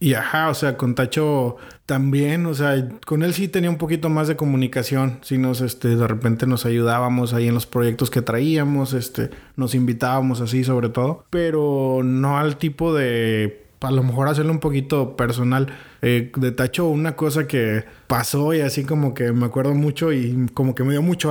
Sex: male